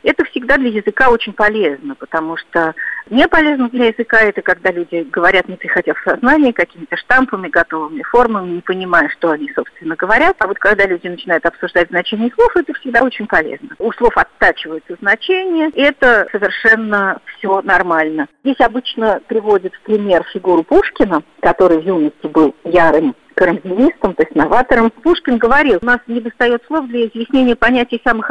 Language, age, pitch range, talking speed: Russian, 50-69, 175-250 Hz, 165 wpm